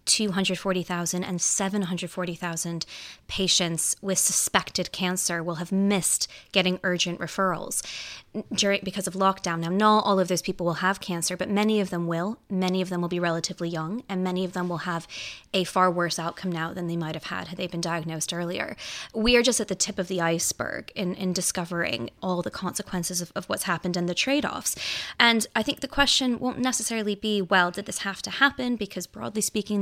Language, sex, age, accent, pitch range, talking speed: English, female, 20-39, American, 175-205 Hz, 195 wpm